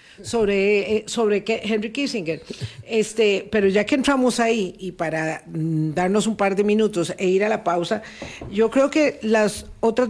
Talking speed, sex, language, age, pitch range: 160 wpm, female, Spanish, 50-69, 185-230 Hz